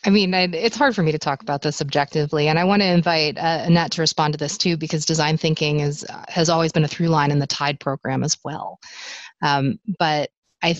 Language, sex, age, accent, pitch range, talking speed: English, female, 30-49, American, 145-170 Hz, 235 wpm